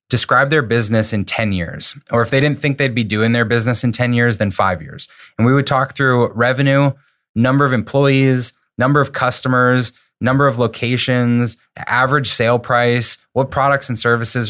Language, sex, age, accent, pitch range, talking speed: English, male, 20-39, American, 105-130 Hz, 180 wpm